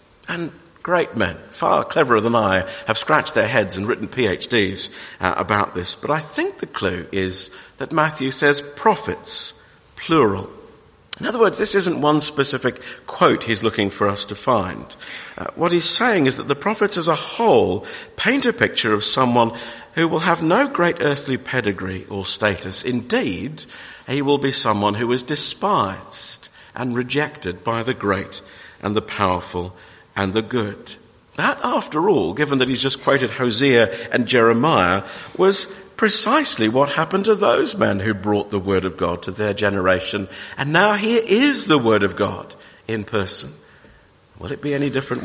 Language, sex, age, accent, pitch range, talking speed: English, male, 50-69, British, 100-150 Hz, 165 wpm